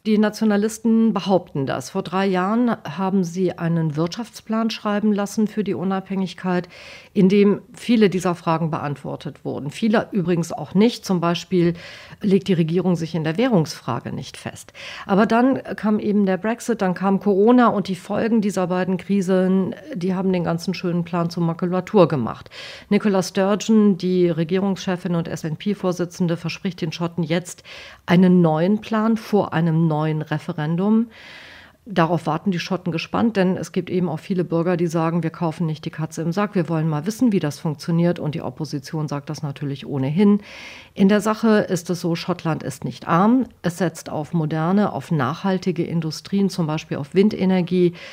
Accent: German